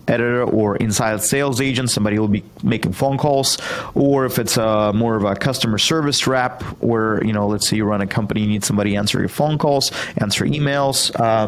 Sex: male